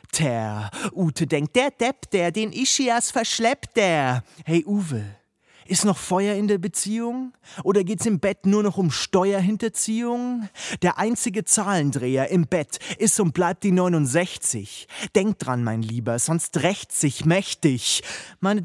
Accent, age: German, 30-49